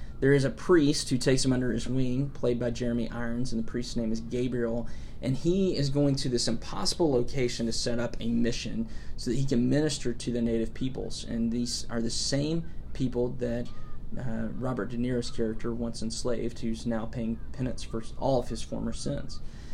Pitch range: 115-135 Hz